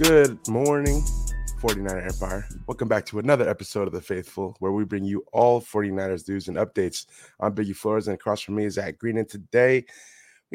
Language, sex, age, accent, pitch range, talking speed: English, male, 20-39, American, 95-110 Hz, 195 wpm